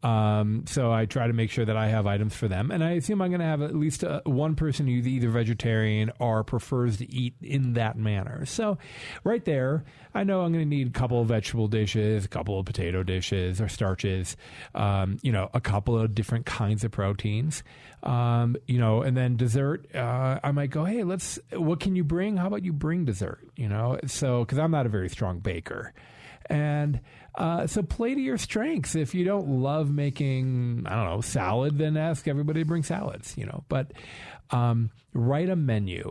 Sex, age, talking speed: male, 40-59, 210 wpm